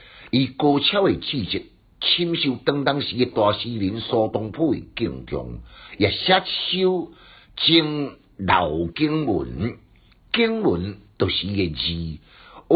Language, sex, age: Chinese, male, 60-79